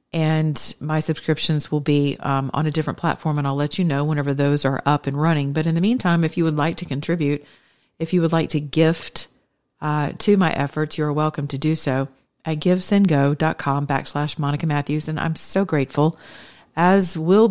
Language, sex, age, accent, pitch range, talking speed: English, female, 40-59, American, 145-175 Hz, 200 wpm